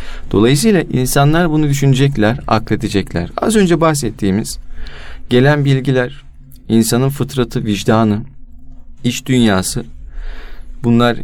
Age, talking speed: 40-59, 85 wpm